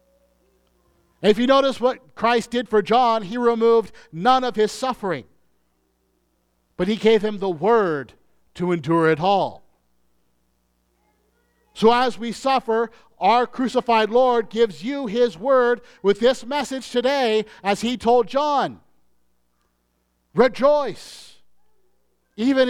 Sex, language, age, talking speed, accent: male, English, 50-69, 120 wpm, American